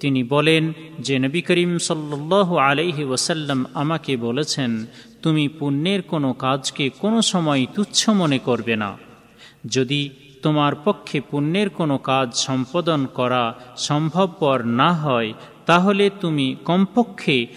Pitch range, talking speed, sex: 130-170 Hz, 75 wpm, male